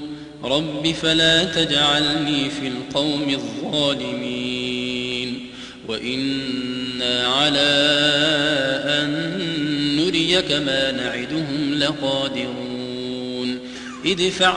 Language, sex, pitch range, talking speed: Arabic, male, 135-180 Hz, 60 wpm